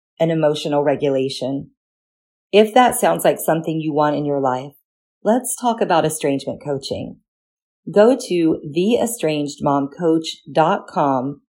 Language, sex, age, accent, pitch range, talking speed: English, female, 40-59, American, 145-190 Hz, 120 wpm